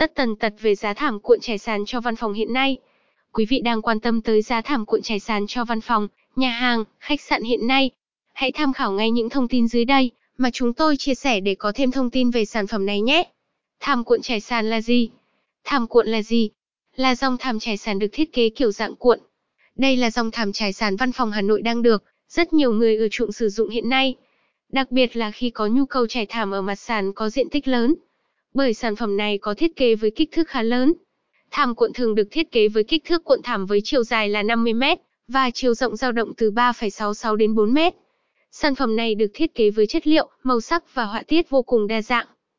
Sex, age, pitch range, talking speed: female, 10-29, 220-265 Hz, 245 wpm